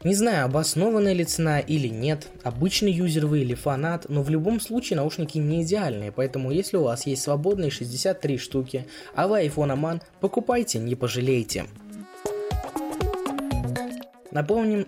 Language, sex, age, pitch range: Russian, male, 20-39, 120-170 Hz